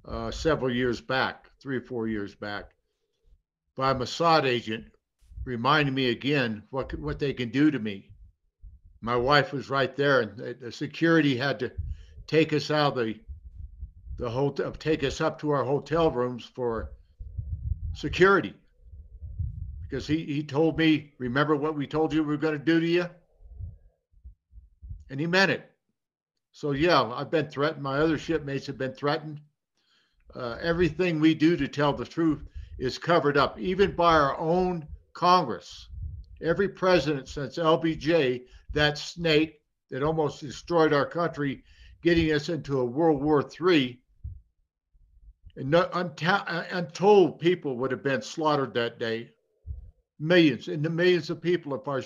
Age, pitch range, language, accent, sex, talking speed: 60-79, 110-160 Hz, English, American, male, 155 wpm